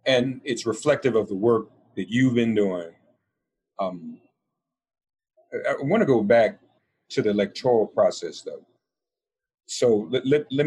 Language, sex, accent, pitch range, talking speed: English, male, American, 105-170 Hz, 140 wpm